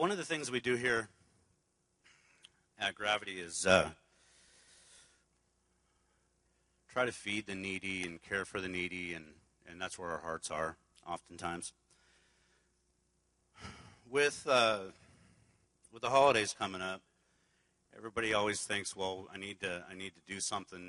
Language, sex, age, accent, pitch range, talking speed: English, male, 40-59, American, 80-105 Hz, 140 wpm